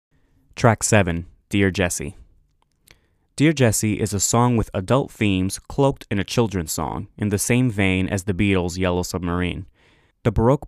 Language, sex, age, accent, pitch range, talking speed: English, male, 20-39, American, 90-115 Hz, 155 wpm